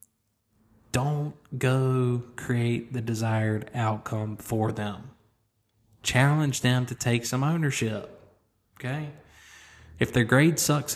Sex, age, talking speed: male, 20-39, 105 wpm